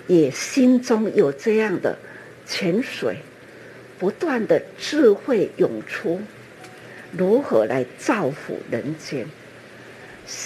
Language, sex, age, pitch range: Chinese, female, 50-69, 185-290 Hz